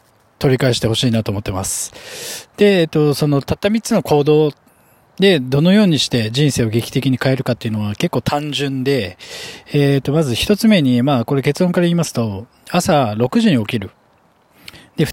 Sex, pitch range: male, 120-165 Hz